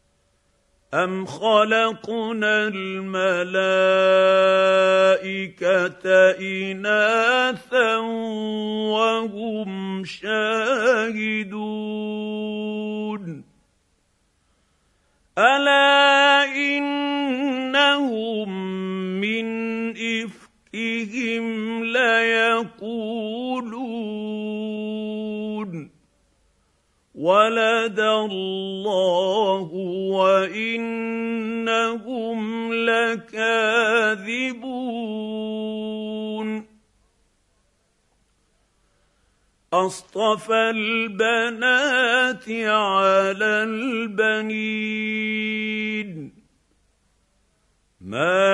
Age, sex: 50-69, male